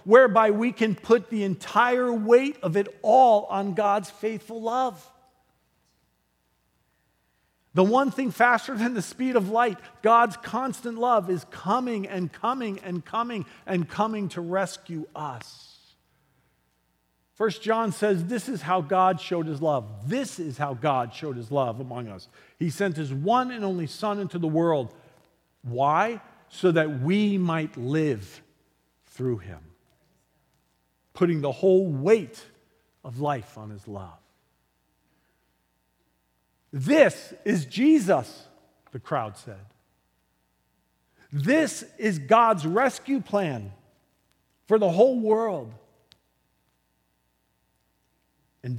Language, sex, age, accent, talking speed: English, male, 50-69, American, 120 wpm